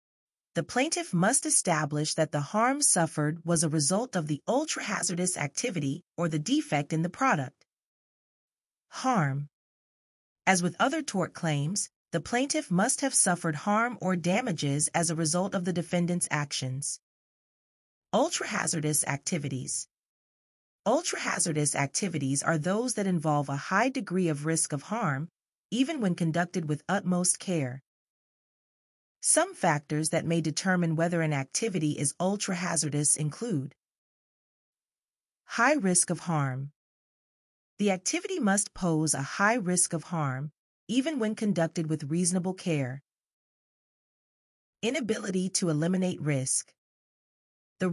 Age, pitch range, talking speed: 30-49, 150-200 Hz, 125 wpm